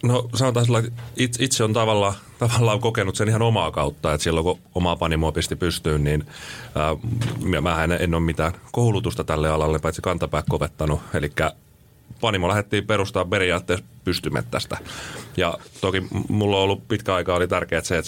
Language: Finnish